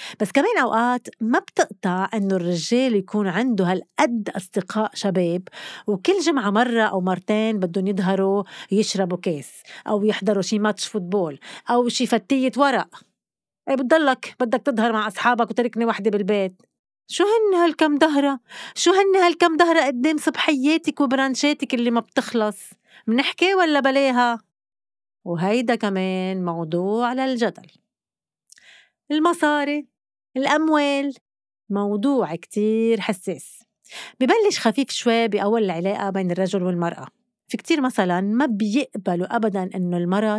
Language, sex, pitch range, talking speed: Arabic, female, 195-265 Hz, 120 wpm